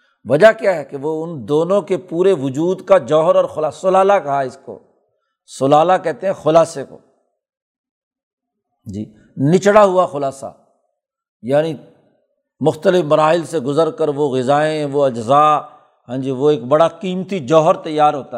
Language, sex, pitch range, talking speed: Urdu, male, 150-190 Hz, 150 wpm